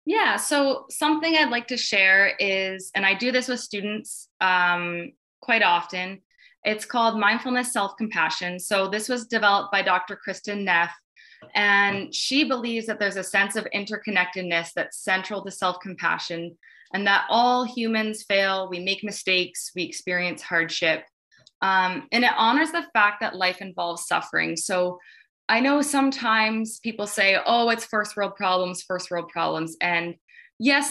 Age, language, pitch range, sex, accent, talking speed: 20-39, English, 185-245 Hz, female, American, 155 wpm